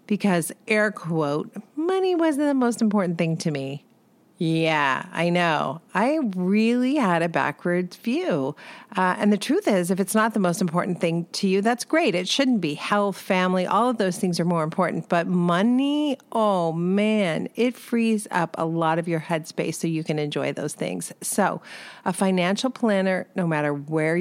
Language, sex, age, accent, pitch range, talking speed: English, female, 40-59, American, 160-215 Hz, 180 wpm